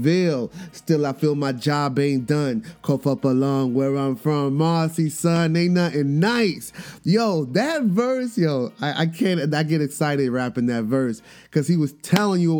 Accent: American